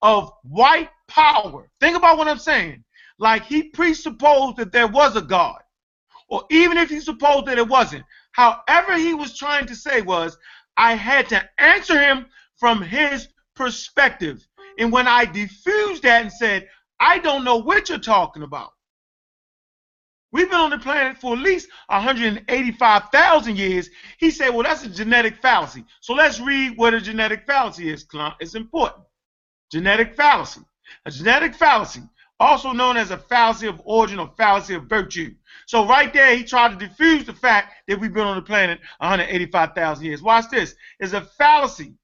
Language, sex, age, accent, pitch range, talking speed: English, male, 30-49, American, 210-285 Hz, 170 wpm